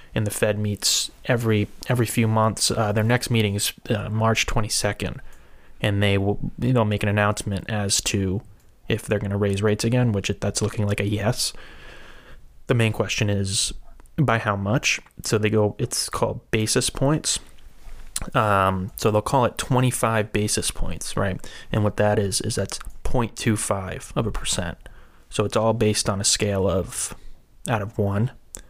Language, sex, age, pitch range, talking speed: English, male, 20-39, 100-115 Hz, 170 wpm